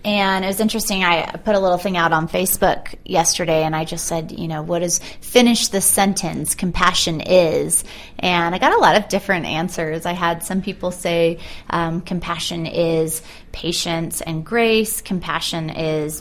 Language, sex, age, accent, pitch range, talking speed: English, female, 30-49, American, 165-200 Hz, 175 wpm